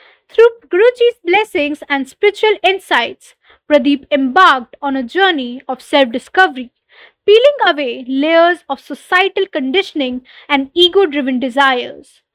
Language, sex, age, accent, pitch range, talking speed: English, female, 20-39, Indian, 265-380 Hz, 105 wpm